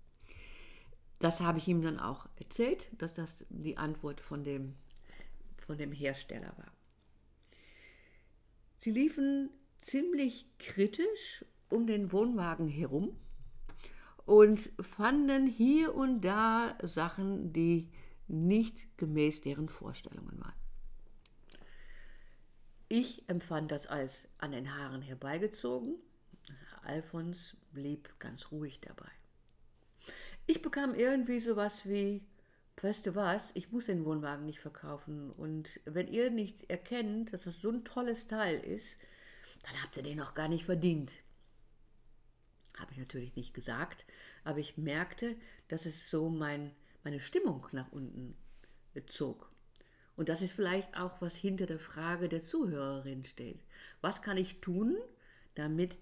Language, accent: German, German